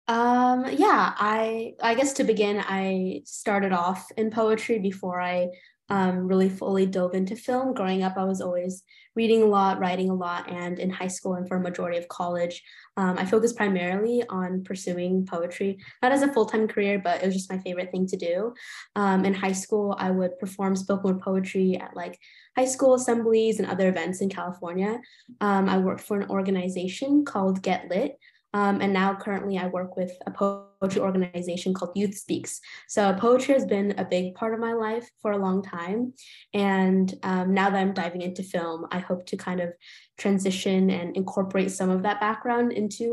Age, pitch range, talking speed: 10-29, 185-215 Hz, 195 wpm